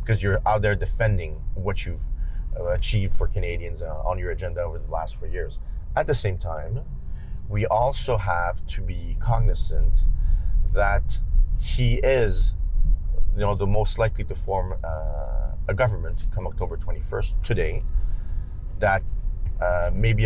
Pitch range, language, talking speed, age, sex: 85-105 Hz, English, 145 wpm, 30-49, male